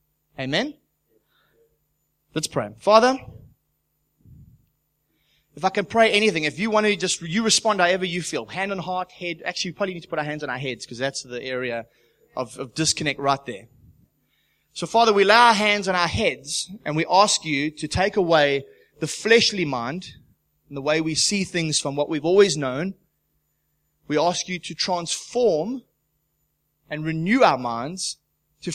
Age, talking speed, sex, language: 20-39, 175 wpm, male, English